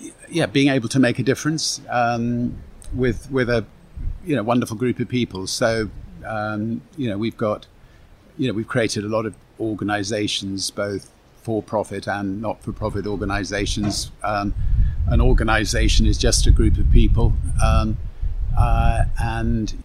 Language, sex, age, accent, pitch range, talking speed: English, male, 50-69, British, 100-115 Hz, 155 wpm